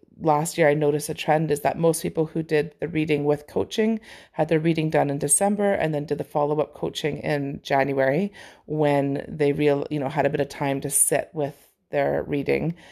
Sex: female